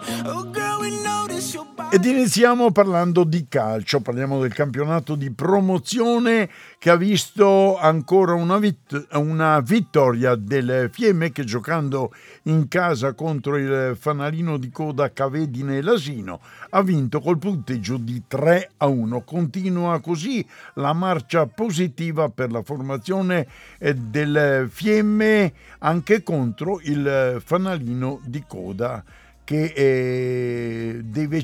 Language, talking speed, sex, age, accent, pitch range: Italian, 110 wpm, male, 60-79, native, 130-175 Hz